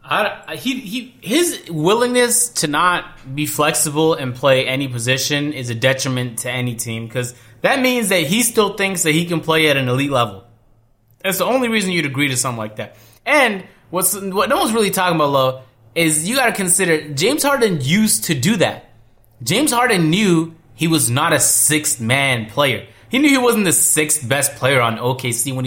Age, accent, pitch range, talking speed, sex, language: 20-39, American, 125-180 Hz, 200 wpm, male, English